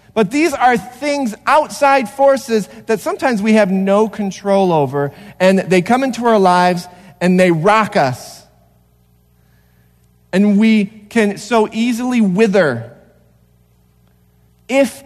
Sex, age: male, 40-59